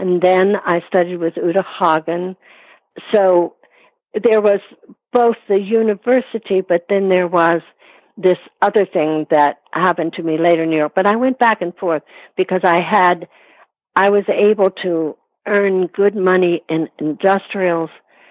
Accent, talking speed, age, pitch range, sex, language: American, 150 wpm, 60-79, 160-195 Hz, female, English